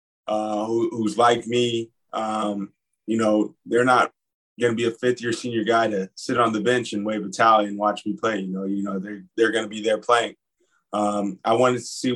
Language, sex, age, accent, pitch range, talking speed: English, male, 20-39, American, 105-115 Hz, 235 wpm